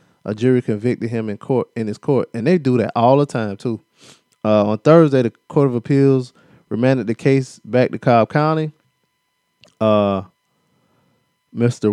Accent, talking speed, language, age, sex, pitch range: American, 165 wpm, English, 20-39, male, 105-145 Hz